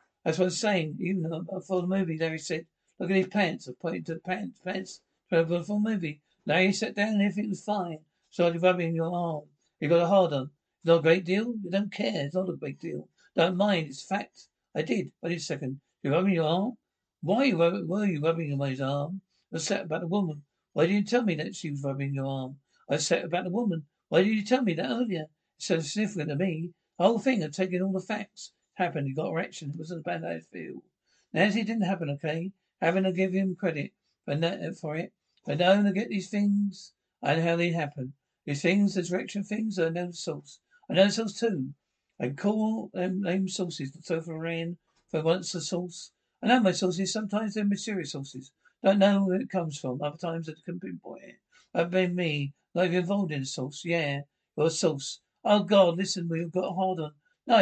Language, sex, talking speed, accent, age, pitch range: English, male, 230 wpm, British, 60-79, 160-195 Hz